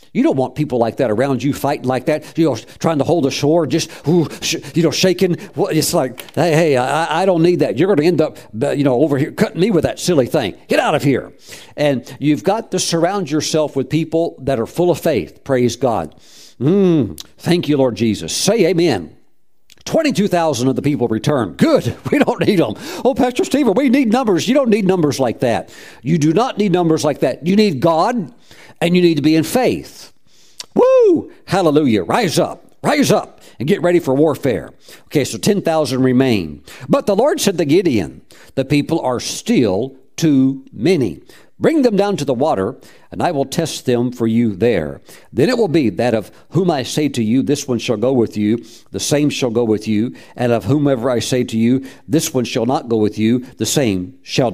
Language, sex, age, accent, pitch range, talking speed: English, male, 50-69, American, 125-170 Hz, 215 wpm